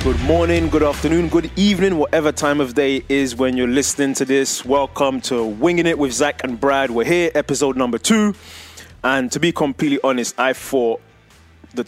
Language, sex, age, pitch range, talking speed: English, male, 20-39, 115-145 Hz, 185 wpm